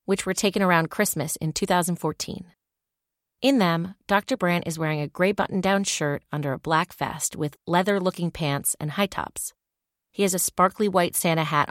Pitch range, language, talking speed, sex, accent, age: 155-195 Hz, English, 175 wpm, female, American, 30-49